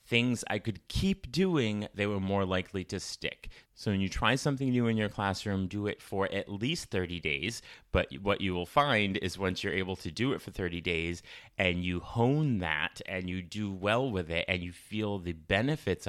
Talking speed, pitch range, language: 215 wpm, 90-115 Hz, English